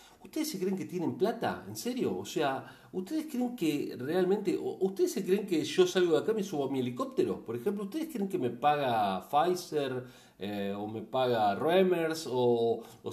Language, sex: Spanish, male